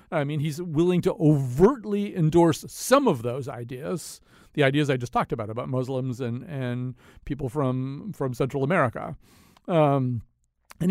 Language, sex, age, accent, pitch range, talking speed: English, male, 40-59, American, 130-185 Hz, 155 wpm